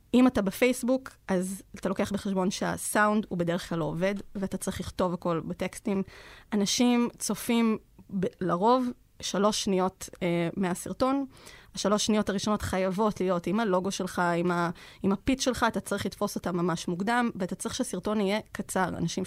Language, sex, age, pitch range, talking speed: Hebrew, female, 20-39, 180-220 Hz, 150 wpm